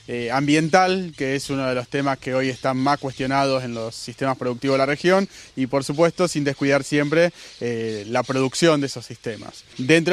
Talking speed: 195 wpm